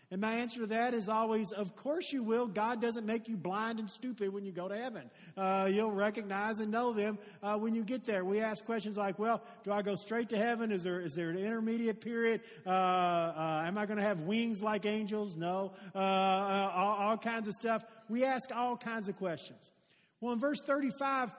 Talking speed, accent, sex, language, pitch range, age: 220 wpm, American, male, English, 190-230 Hz, 50-69